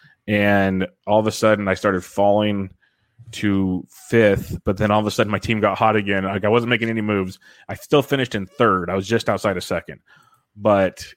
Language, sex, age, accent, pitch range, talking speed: English, male, 20-39, American, 95-115 Hz, 210 wpm